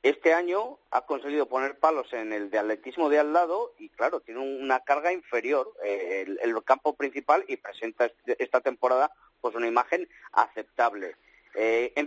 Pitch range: 130-205 Hz